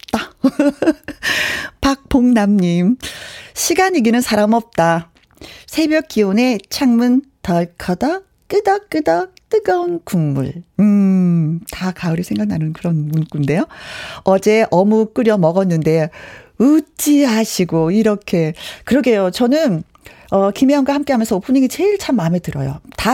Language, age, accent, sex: Korean, 40-59, native, female